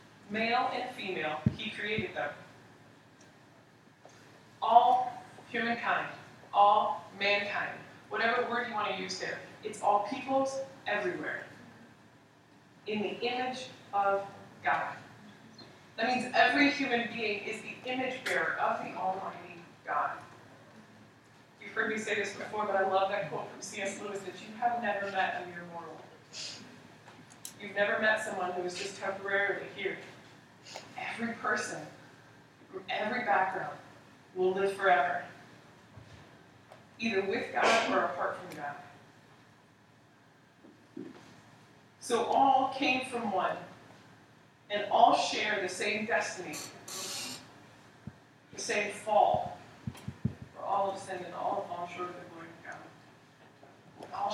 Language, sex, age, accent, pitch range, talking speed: English, female, 20-39, American, 180-235 Hz, 125 wpm